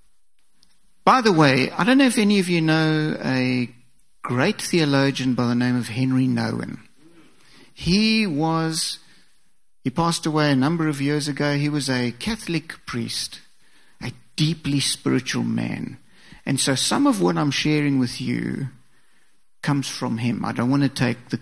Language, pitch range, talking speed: English, 125-165 Hz, 160 wpm